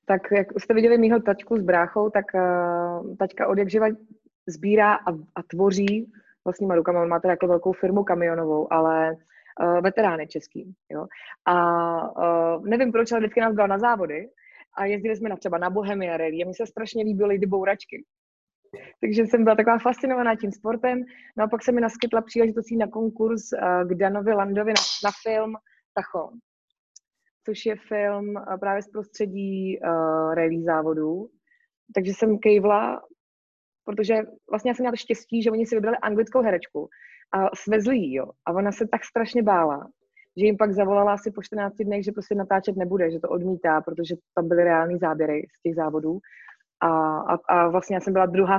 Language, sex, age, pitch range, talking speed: Slovak, female, 20-39, 180-225 Hz, 175 wpm